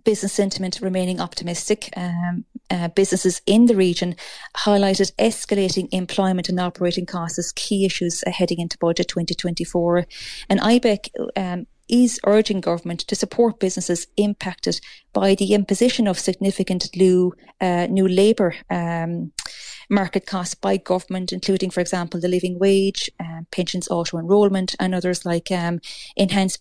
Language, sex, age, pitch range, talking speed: English, female, 30-49, 180-205 Hz, 135 wpm